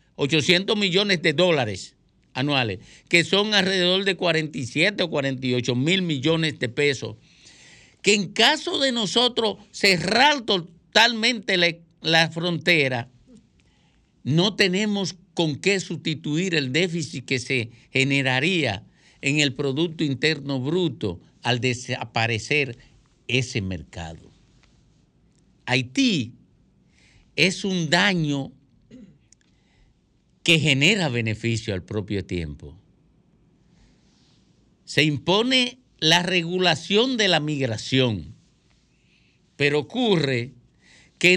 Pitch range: 130-190 Hz